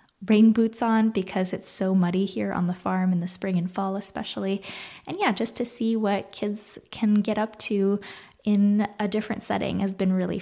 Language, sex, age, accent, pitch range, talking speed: English, female, 10-29, American, 190-220 Hz, 200 wpm